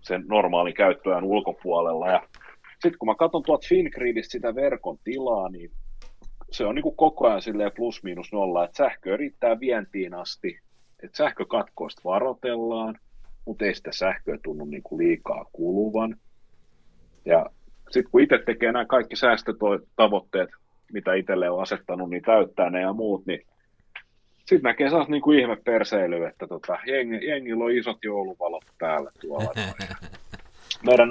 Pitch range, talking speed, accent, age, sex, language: 95-135 Hz, 135 wpm, native, 30-49, male, Finnish